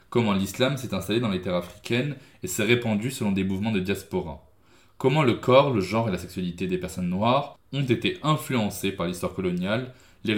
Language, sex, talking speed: French, male, 195 wpm